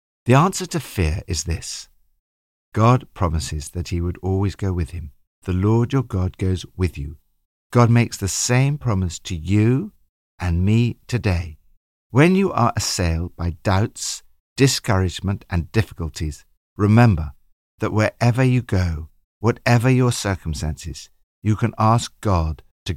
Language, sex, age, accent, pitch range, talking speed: English, male, 60-79, British, 85-120 Hz, 140 wpm